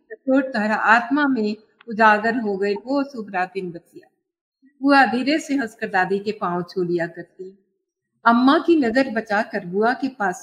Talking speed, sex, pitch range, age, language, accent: 105 wpm, female, 200-275 Hz, 50-69, Hindi, native